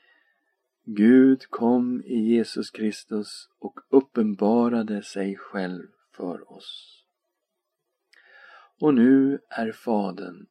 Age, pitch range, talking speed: 50-69, 95-110 Hz, 85 wpm